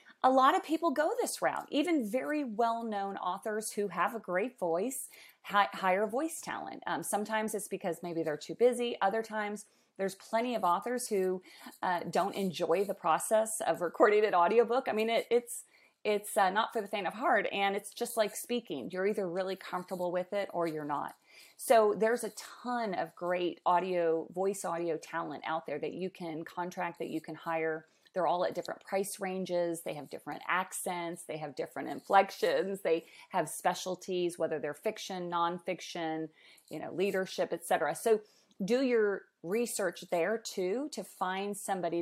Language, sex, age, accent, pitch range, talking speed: English, female, 30-49, American, 175-220 Hz, 175 wpm